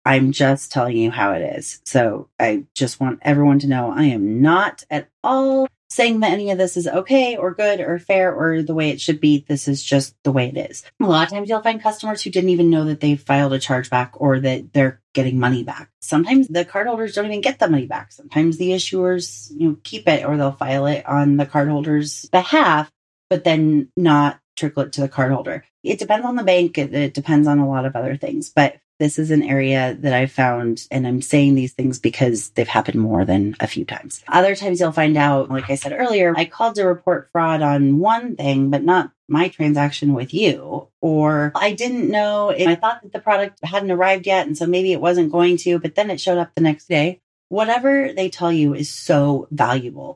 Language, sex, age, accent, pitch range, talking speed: English, female, 30-49, American, 140-180 Hz, 225 wpm